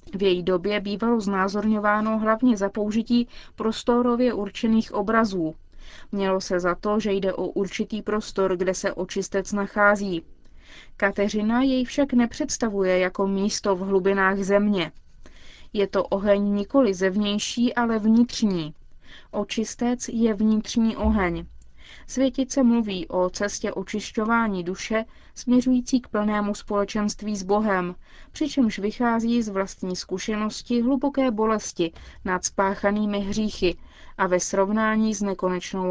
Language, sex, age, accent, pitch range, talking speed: Czech, female, 20-39, native, 190-225 Hz, 120 wpm